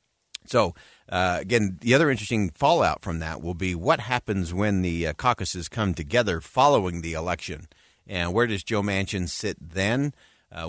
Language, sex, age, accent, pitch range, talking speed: English, male, 50-69, American, 90-120 Hz, 170 wpm